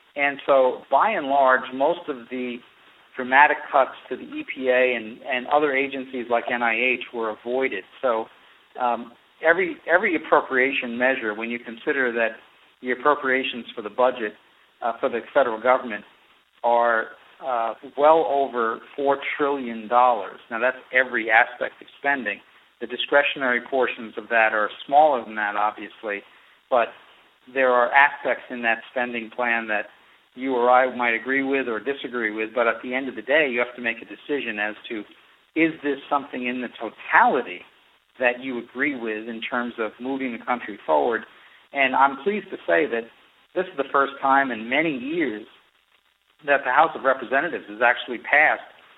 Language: English